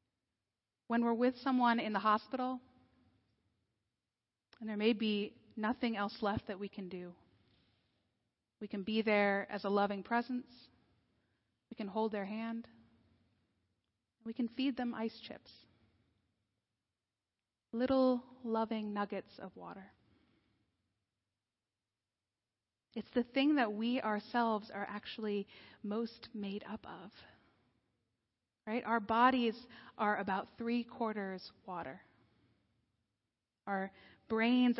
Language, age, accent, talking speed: English, 30-49, American, 105 wpm